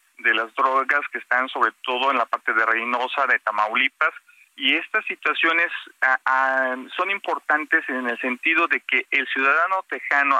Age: 40-59